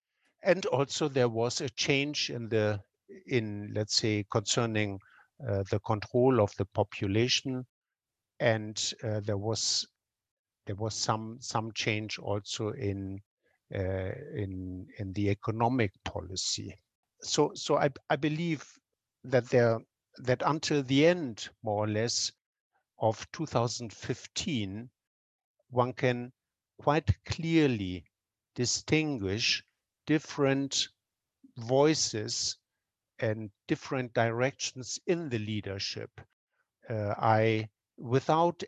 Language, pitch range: English, 105-135 Hz